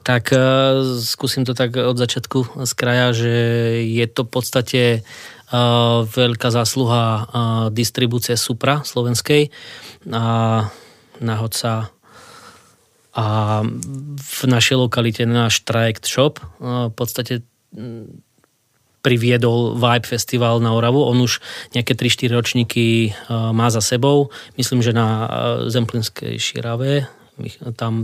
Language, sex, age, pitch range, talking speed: Slovak, male, 20-39, 115-125 Hz, 120 wpm